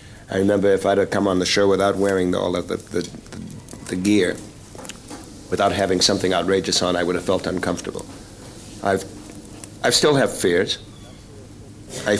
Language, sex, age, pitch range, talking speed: English, male, 50-69, 100-115 Hz, 175 wpm